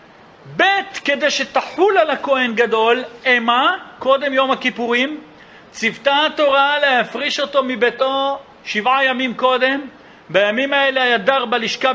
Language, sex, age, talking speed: Hebrew, male, 50-69, 115 wpm